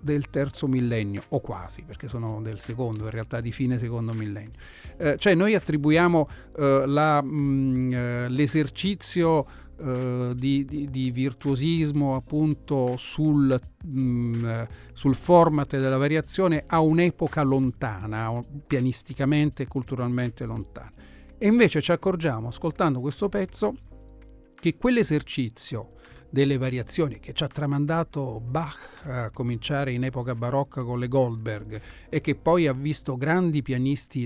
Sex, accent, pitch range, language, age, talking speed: male, native, 120-155 Hz, Italian, 40-59, 120 wpm